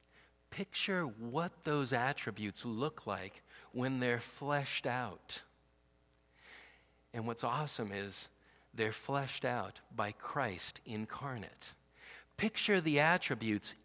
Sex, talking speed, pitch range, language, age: male, 100 wpm, 105-140 Hz, English, 50-69